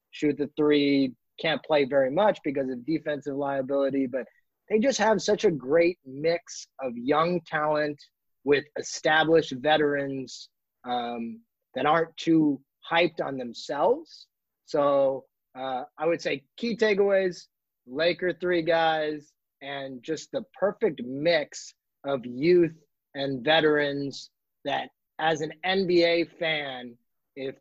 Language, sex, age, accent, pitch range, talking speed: English, male, 30-49, American, 140-170 Hz, 125 wpm